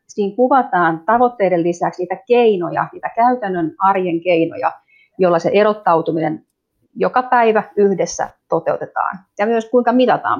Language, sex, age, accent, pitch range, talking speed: Finnish, female, 30-49, native, 175-235 Hz, 120 wpm